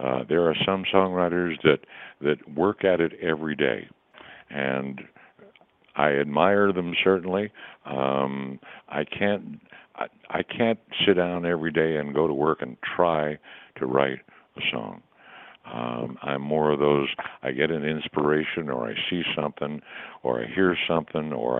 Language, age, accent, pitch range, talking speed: English, 60-79, American, 70-90 Hz, 155 wpm